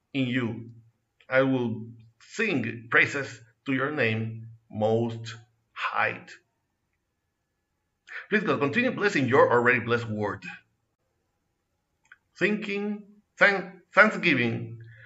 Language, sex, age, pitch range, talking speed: Spanish, male, 60-79, 110-145 Hz, 90 wpm